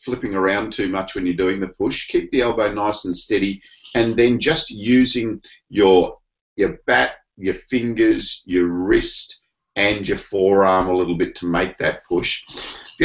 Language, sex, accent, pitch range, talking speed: English, male, Australian, 90-125 Hz, 170 wpm